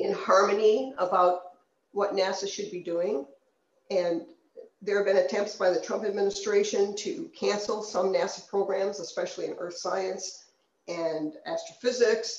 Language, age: English, 50-69